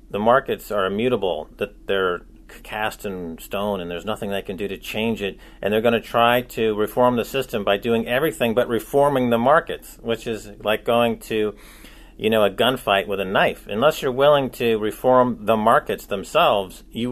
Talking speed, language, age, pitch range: 195 wpm, English, 40-59, 105-125 Hz